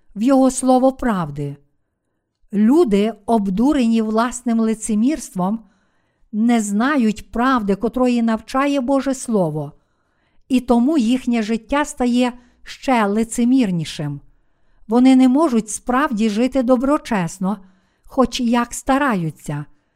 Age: 50-69